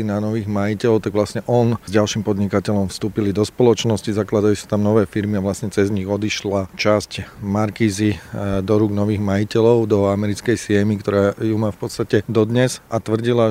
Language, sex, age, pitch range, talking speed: Slovak, male, 40-59, 105-115 Hz, 175 wpm